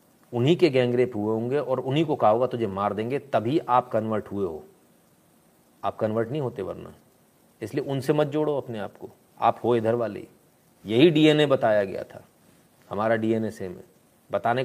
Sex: male